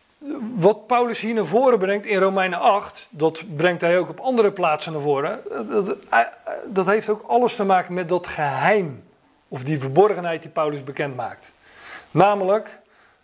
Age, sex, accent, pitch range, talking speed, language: 40-59, male, Dutch, 150-195 Hz, 160 wpm, Dutch